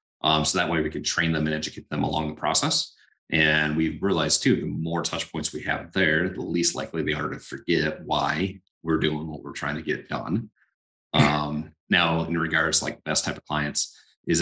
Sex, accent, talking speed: male, American, 215 wpm